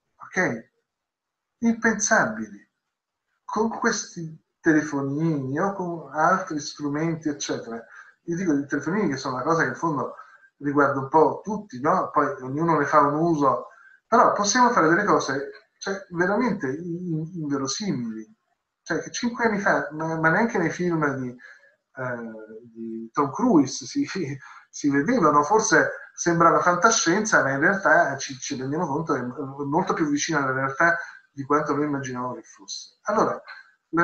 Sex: male